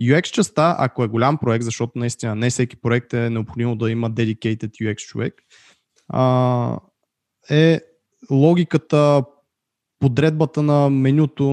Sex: male